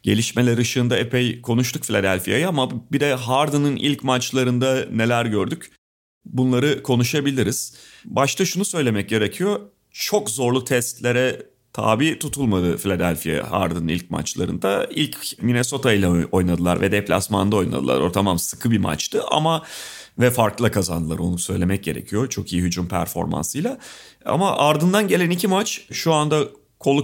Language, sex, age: Turkish, male, 40-59